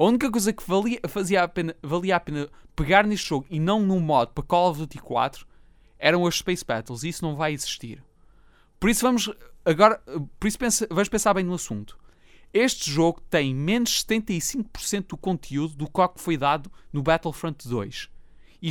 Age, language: 20-39, Portuguese